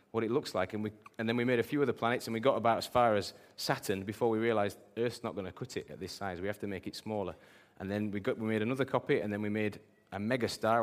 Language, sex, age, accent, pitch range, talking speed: English, male, 30-49, British, 95-110 Hz, 300 wpm